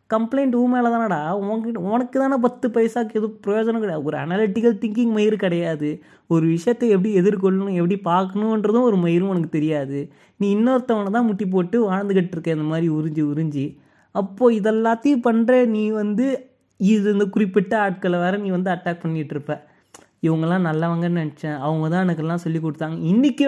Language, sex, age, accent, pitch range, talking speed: Tamil, male, 20-39, native, 170-225 Hz, 150 wpm